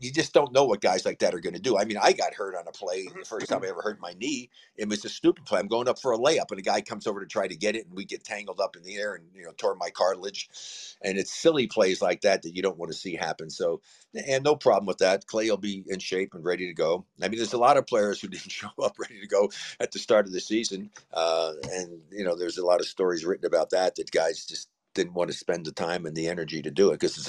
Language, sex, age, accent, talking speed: English, male, 50-69, American, 310 wpm